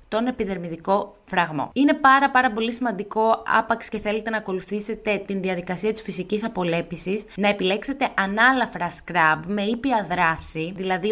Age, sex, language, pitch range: 20-39, female, Greek, 195-250 Hz